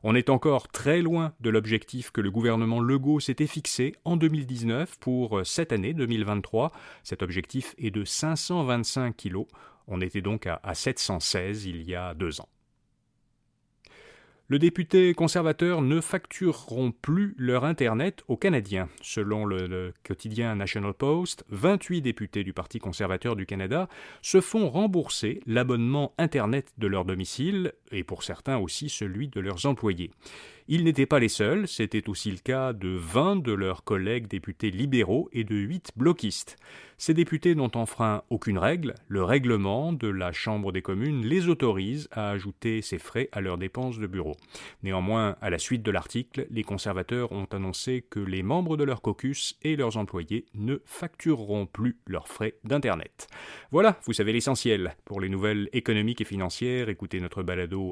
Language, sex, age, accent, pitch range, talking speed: French, male, 30-49, French, 100-140 Hz, 160 wpm